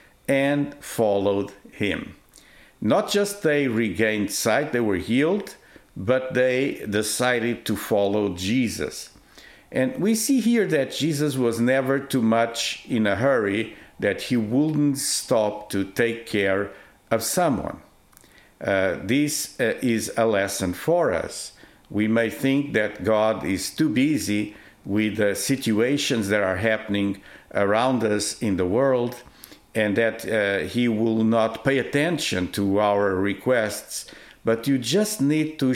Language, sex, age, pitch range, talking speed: English, male, 50-69, 100-130 Hz, 140 wpm